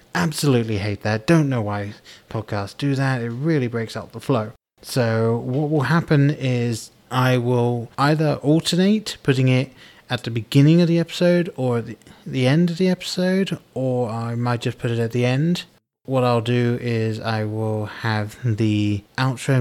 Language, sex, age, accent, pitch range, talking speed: English, male, 30-49, British, 110-145 Hz, 175 wpm